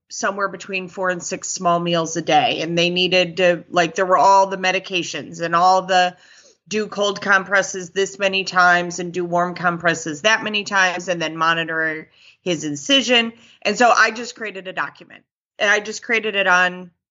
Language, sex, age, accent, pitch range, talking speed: English, female, 30-49, American, 175-205 Hz, 185 wpm